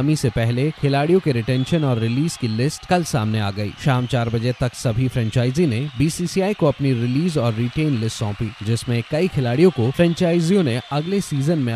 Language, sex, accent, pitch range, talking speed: Hindi, male, native, 120-165 Hz, 190 wpm